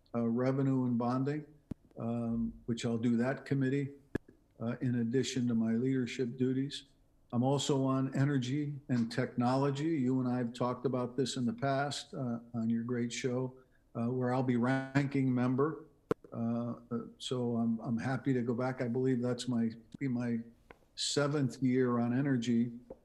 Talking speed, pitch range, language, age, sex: 160 wpm, 115-135 Hz, English, 50-69, male